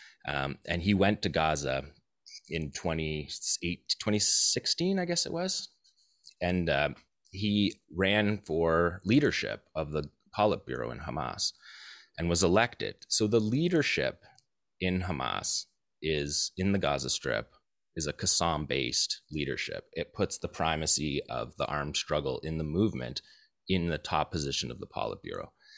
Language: English